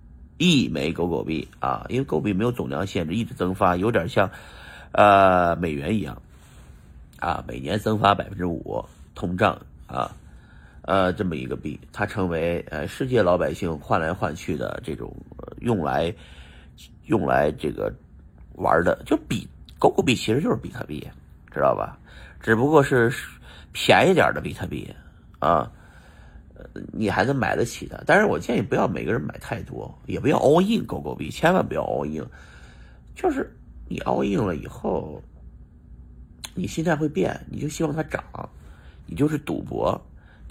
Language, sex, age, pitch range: Chinese, male, 50-69, 65-105 Hz